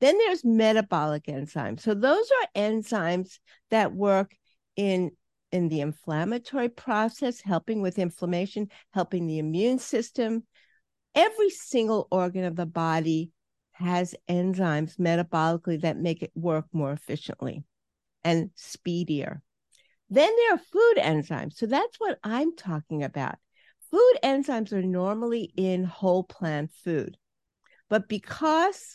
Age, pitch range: 50-69, 170-225 Hz